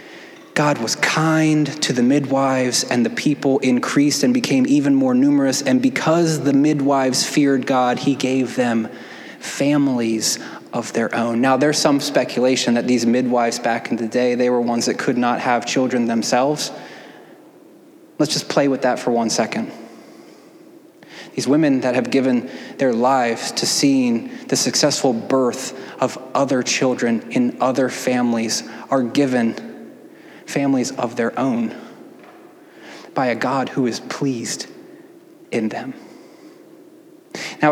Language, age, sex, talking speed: English, 20-39, male, 140 wpm